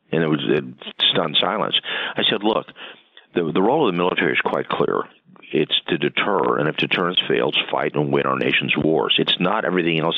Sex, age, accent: male, 50-69, American